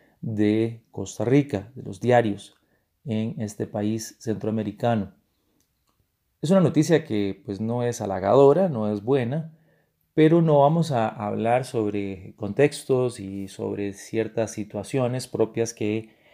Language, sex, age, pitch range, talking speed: Spanish, male, 30-49, 105-135 Hz, 125 wpm